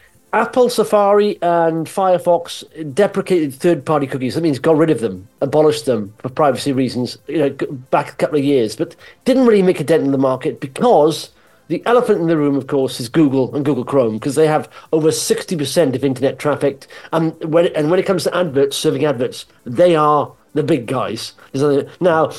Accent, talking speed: British, 190 wpm